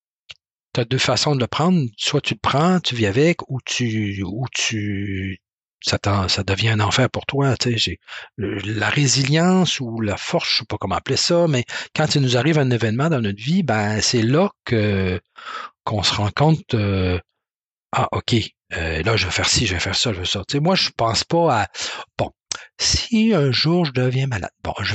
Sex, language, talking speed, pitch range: male, French, 220 wpm, 110-150 Hz